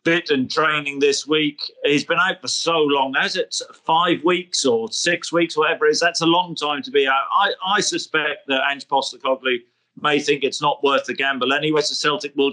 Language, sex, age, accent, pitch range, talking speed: English, male, 40-59, British, 135-160 Hz, 215 wpm